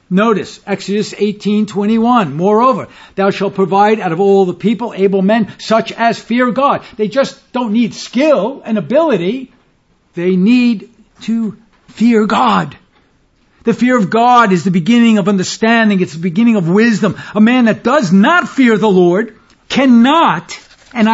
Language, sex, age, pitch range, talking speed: English, male, 60-79, 200-250 Hz, 155 wpm